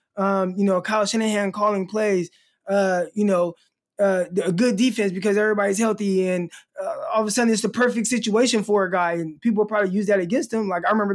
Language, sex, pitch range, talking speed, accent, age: English, male, 185-250 Hz, 215 wpm, American, 20-39